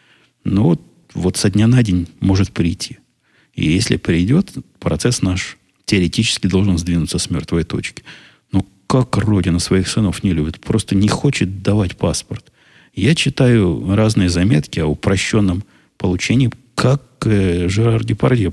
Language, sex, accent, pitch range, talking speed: Russian, male, native, 90-115 Hz, 140 wpm